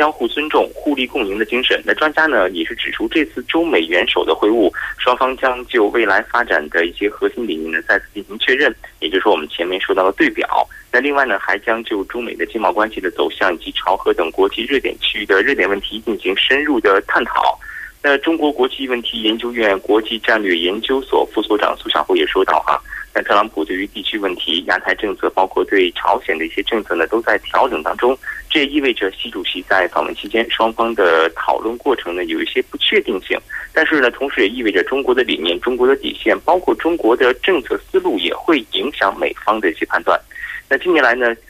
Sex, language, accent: male, Korean, Chinese